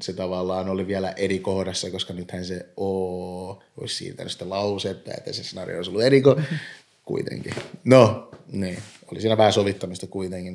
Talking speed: 165 wpm